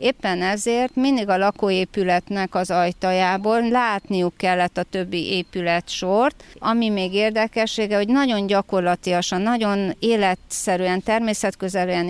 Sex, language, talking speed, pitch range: female, Hungarian, 110 wpm, 180-225 Hz